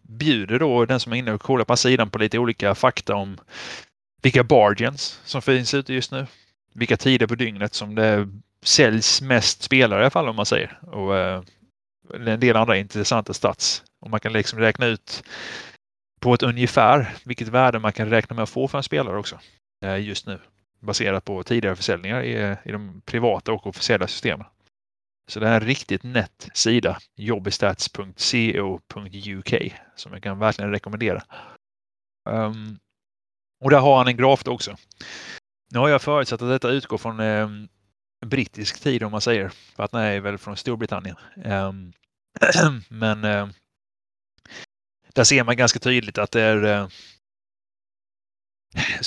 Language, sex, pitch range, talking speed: Swedish, male, 100-120 Hz, 160 wpm